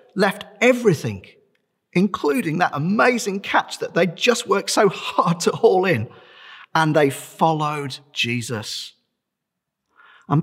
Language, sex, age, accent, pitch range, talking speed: English, male, 40-59, British, 140-215 Hz, 115 wpm